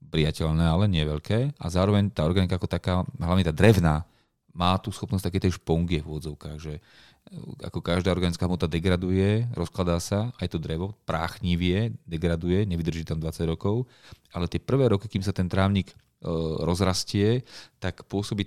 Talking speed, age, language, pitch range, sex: 155 wpm, 30-49, Slovak, 80-100 Hz, male